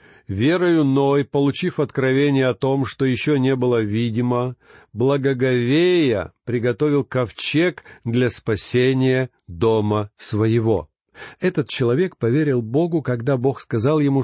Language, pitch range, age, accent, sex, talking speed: Russian, 120-145 Hz, 50-69, native, male, 110 wpm